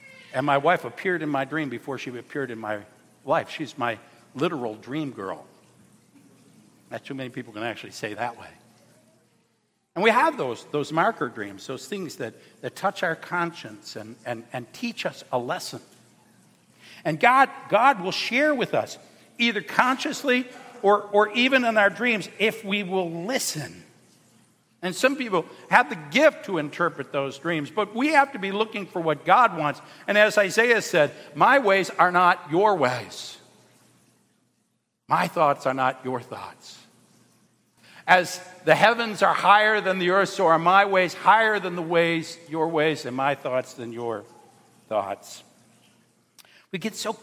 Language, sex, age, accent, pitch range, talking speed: English, male, 60-79, American, 145-230 Hz, 165 wpm